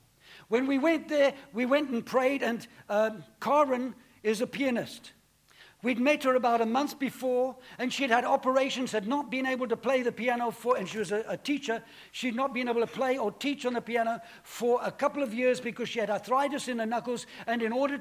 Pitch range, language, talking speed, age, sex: 225-270 Hz, English, 220 wpm, 60-79, male